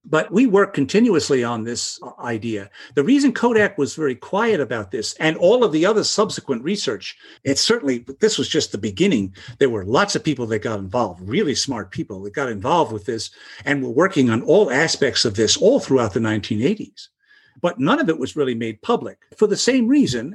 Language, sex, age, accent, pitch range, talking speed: English, male, 50-69, American, 120-185 Hz, 205 wpm